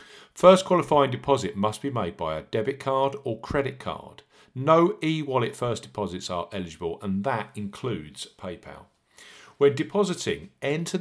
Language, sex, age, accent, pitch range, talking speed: English, male, 50-69, British, 100-150 Hz, 140 wpm